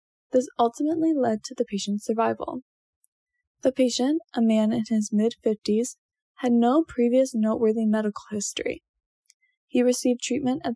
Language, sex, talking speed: English, female, 135 wpm